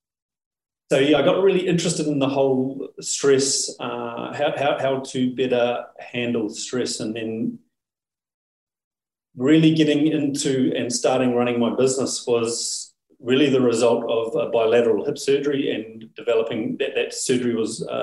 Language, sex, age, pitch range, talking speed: English, male, 30-49, 120-150 Hz, 145 wpm